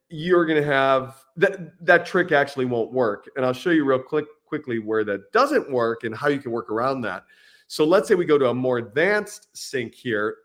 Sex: male